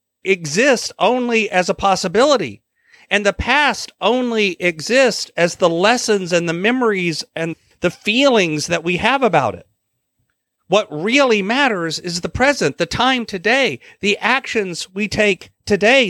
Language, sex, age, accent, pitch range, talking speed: English, male, 40-59, American, 170-225 Hz, 140 wpm